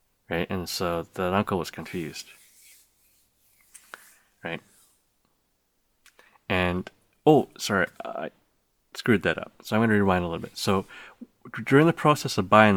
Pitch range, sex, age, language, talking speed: 90-115 Hz, male, 30-49, English, 130 wpm